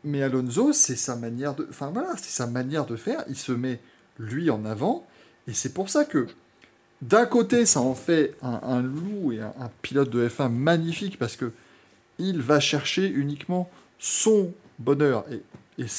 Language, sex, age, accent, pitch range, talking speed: French, male, 20-39, French, 115-150 Hz, 180 wpm